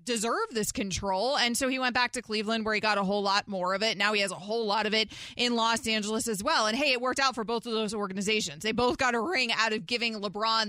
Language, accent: English, American